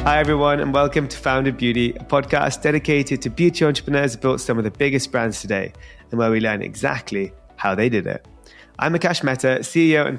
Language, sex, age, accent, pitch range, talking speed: English, male, 20-39, British, 120-155 Hz, 205 wpm